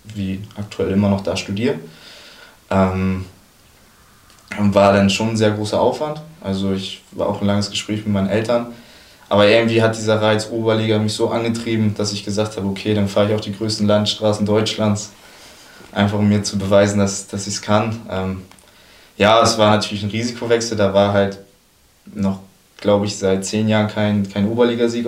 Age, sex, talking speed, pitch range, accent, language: 20-39, male, 175 wpm, 100-110 Hz, German, German